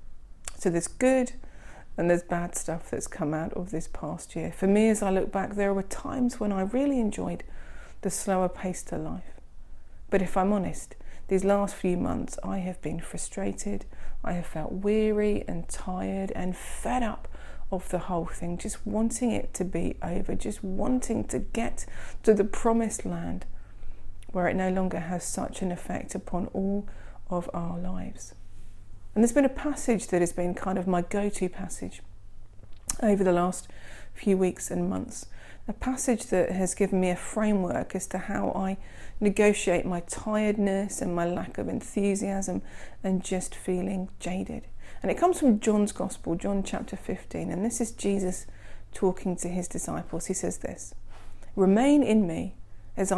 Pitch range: 165-205 Hz